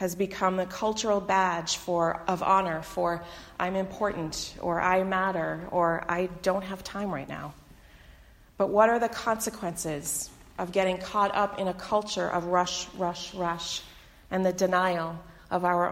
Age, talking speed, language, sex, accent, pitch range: 30-49, 160 wpm, English, female, American, 175-195 Hz